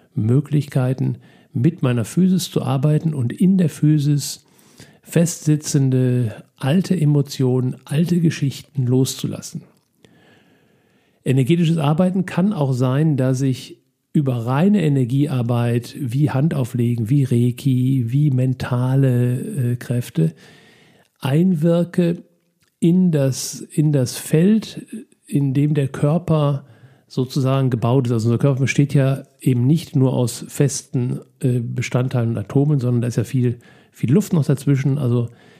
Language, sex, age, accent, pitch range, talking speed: German, male, 50-69, German, 125-155 Hz, 115 wpm